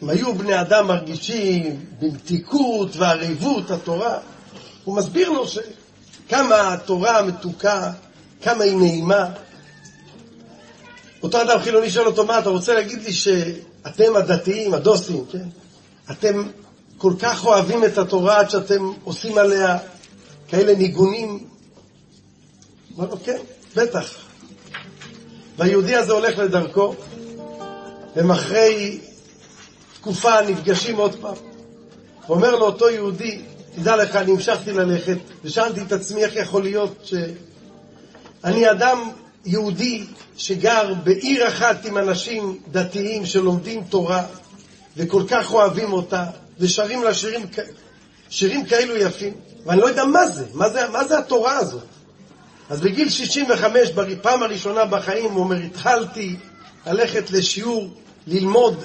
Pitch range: 185-225 Hz